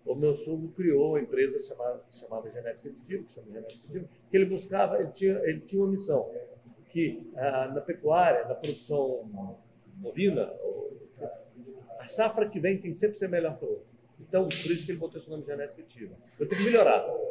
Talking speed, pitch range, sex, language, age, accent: 185 wpm, 145-230 Hz, male, Portuguese, 50-69, Brazilian